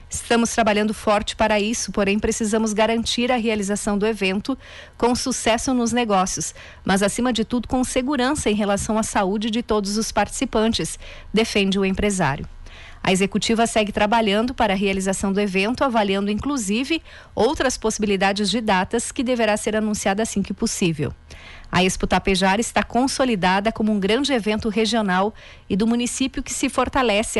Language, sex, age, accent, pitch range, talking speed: Portuguese, female, 40-59, Brazilian, 195-235 Hz, 155 wpm